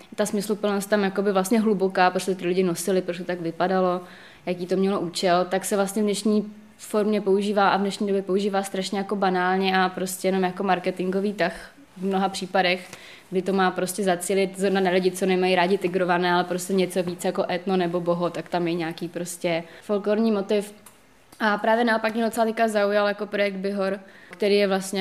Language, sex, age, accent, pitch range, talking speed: Czech, female, 20-39, native, 180-200 Hz, 190 wpm